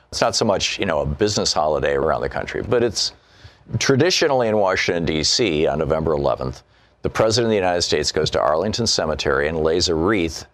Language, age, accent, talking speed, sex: English, 50-69, American, 200 wpm, male